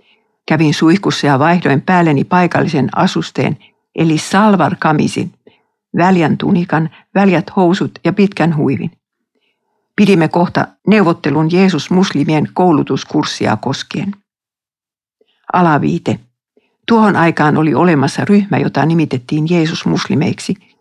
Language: Finnish